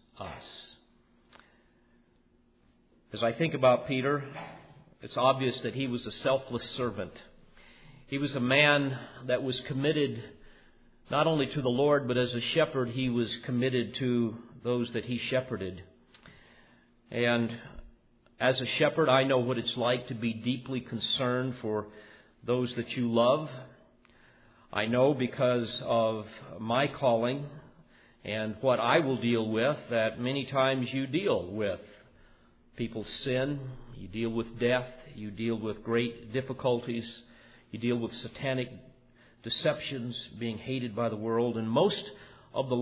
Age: 50-69